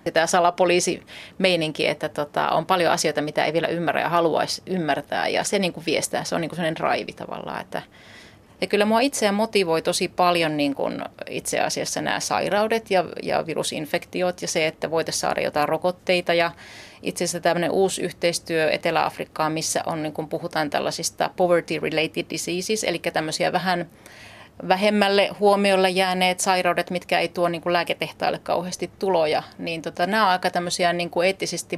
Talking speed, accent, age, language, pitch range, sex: 140 wpm, native, 30-49, Finnish, 165-185 Hz, female